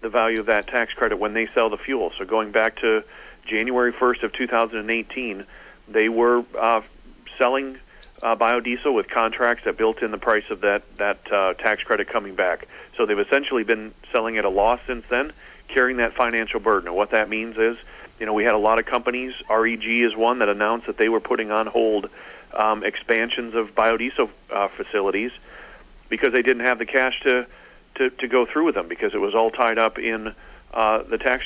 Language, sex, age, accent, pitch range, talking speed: English, male, 40-59, American, 110-130 Hz, 205 wpm